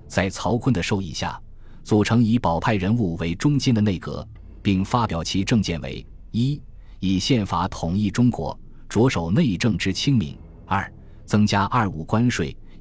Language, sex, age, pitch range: Chinese, male, 20-39, 85-115 Hz